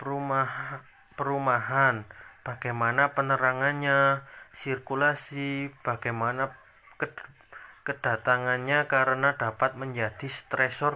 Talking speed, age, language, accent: 55 wpm, 30-49, Indonesian, native